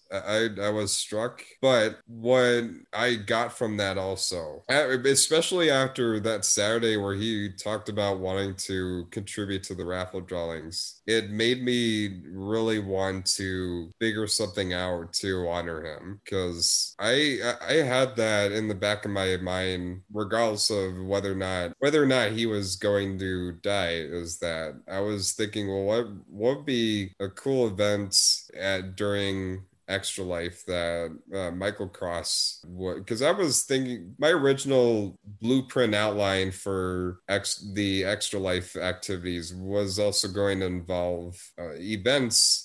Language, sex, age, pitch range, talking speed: English, male, 20-39, 95-110 Hz, 150 wpm